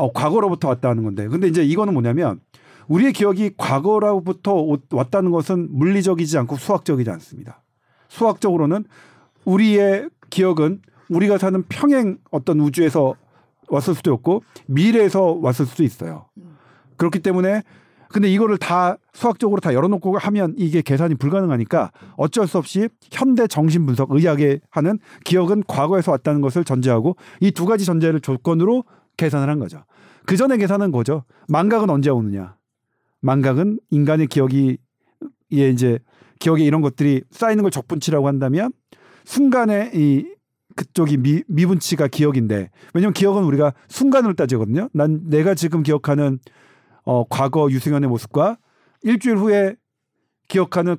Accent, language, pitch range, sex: native, Korean, 140-195 Hz, male